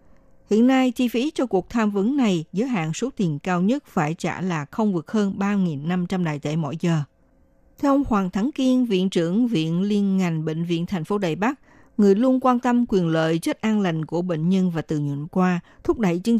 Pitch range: 170-225 Hz